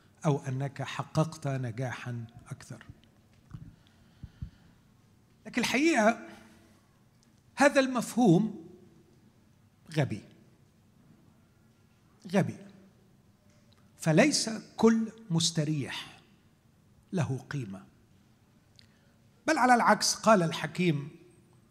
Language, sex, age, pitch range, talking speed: Arabic, male, 50-69, 115-170 Hz, 60 wpm